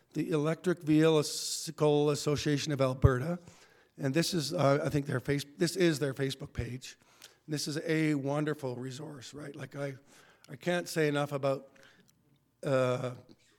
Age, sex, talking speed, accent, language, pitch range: 50-69, male, 150 wpm, American, English, 135-160 Hz